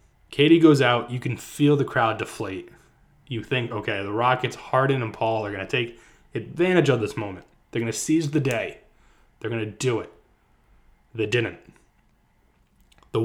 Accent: American